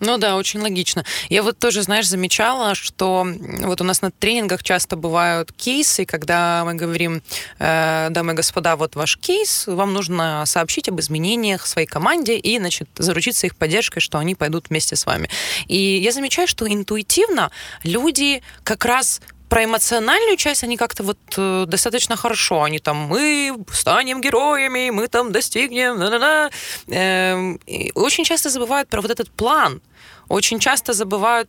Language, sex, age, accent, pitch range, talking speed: Russian, female, 20-39, native, 170-230 Hz, 155 wpm